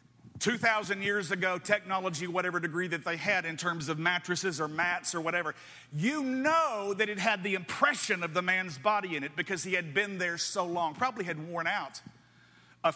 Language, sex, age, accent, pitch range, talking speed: English, male, 50-69, American, 170-220 Hz, 195 wpm